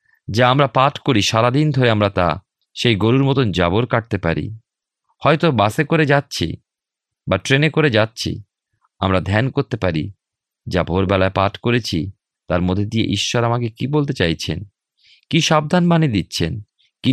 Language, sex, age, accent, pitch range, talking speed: Bengali, male, 40-59, native, 90-125 Hz, 100 wpm